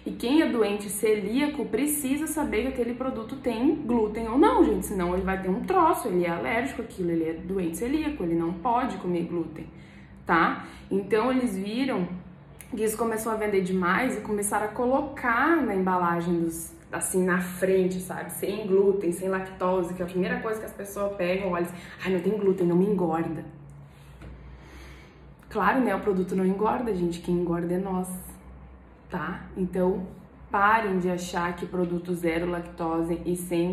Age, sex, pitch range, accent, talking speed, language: 10-29, female, 175-215 Hz, Brazilian, 180 wpm, Portuguese